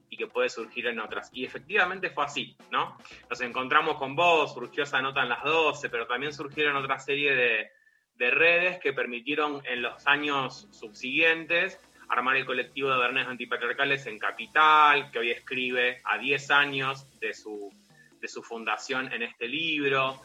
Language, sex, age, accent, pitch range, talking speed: Spanish, male, 20-39, Argentinian, 125-150 Hz, 165 wpm